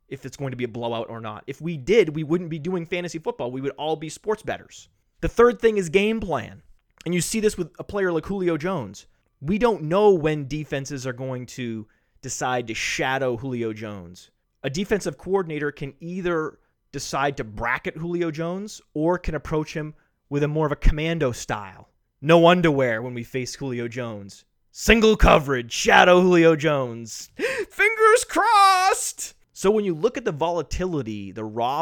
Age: 30-49